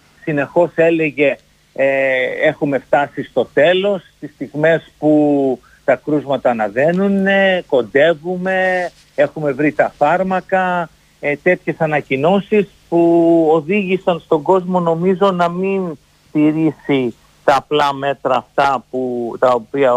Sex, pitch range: male, 125-175 Hz